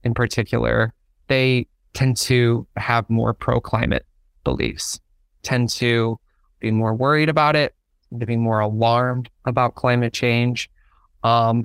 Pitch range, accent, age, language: 115-145 Hz, American, 20-39, English